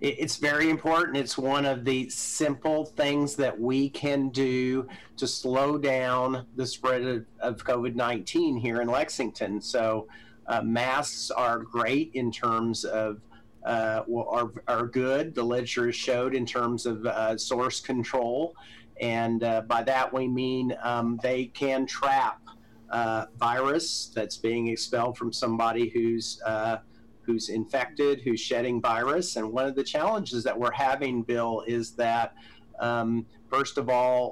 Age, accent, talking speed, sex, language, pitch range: 40-59, American, 145 wpm, male, English, 115-130 Hz